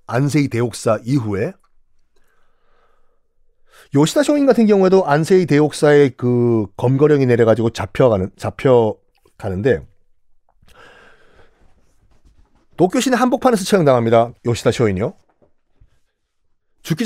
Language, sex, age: Korean, male, 40-59